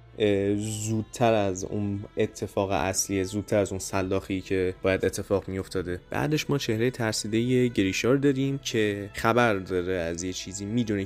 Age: 20-39